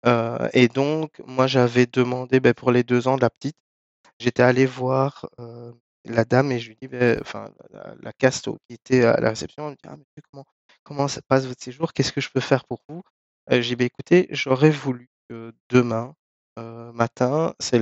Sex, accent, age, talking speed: male, French, 20-39, 210 wpm